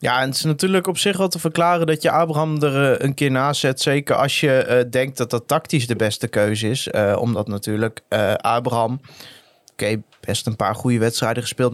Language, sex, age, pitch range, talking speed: Dutch, male, 20-39, 125-150 Hz, 215 wpm